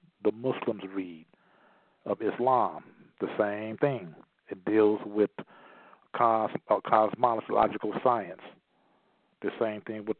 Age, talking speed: 50-69, 110 wpm